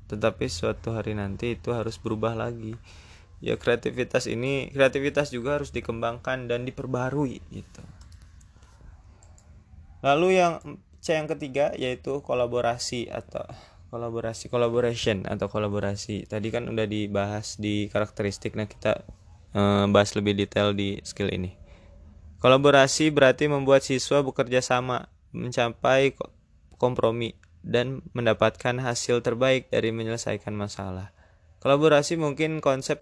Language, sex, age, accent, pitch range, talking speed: Indonesian, male, 20-39, native, 100-135 Hz, 115 wpm